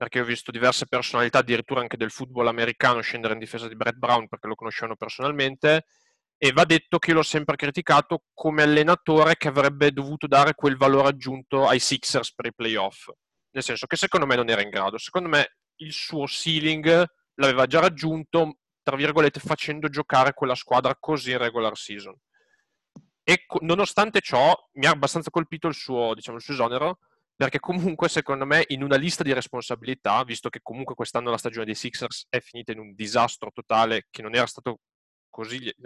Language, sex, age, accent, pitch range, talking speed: Italian, male, 30-49, native, 120-155 Hz, 185 wpm